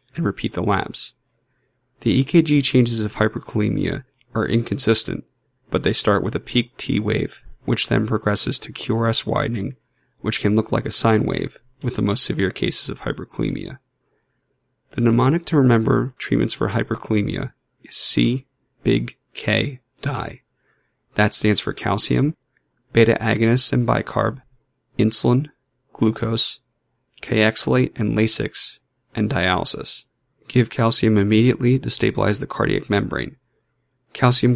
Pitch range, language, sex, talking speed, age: 105-130 Hz, English, male, 125 wpm, 30-49